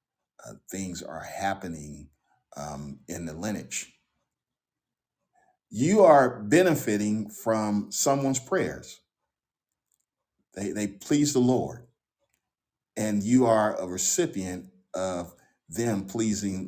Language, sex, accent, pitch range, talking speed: English, male, American, 100-125 Hz, 95 wpm